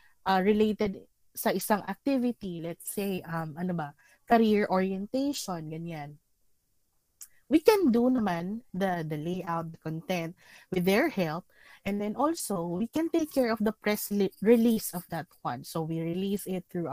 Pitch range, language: 180-240 Hz, Filipino